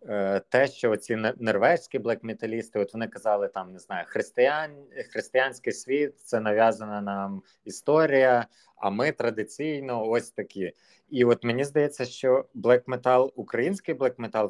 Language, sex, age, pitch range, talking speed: Ukrainian, male, 30-49, 105-130 Hz, 130 wpm